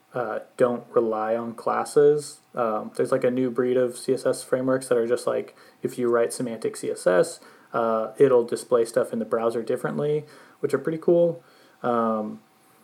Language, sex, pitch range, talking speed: English, male, 115-160 Hz, 170 wpm